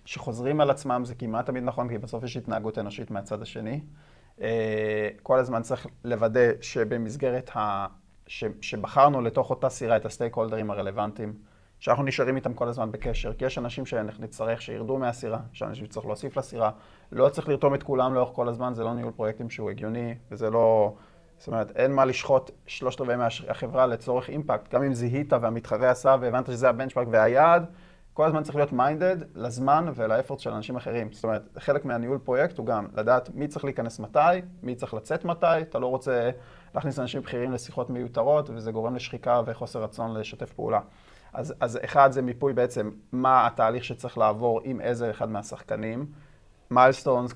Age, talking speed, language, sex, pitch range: 30-49, 165 wpm, Hebrew, male, 110-130 Hz